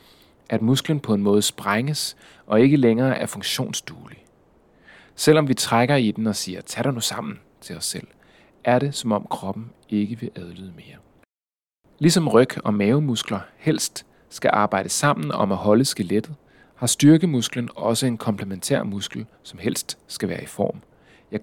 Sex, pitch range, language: male, 105-130 Hz, Danish